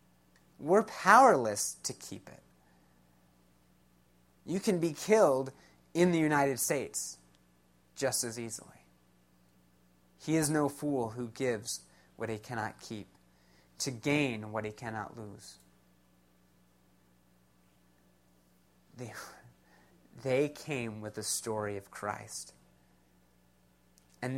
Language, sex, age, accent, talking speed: English, male, 30-49, American, 100 wpm